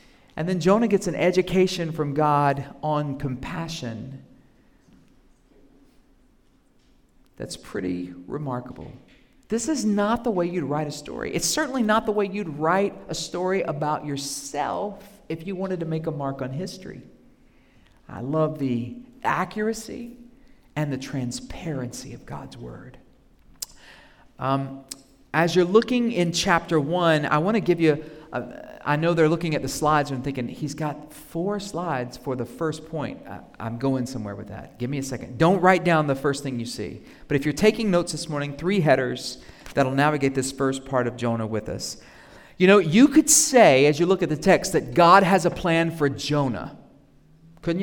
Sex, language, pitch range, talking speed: male, English, 135-180 Hz, 170 wpm